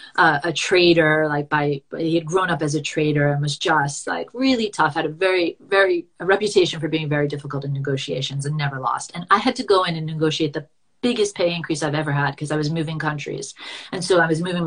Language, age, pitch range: English, 30-49, 155-205 Hz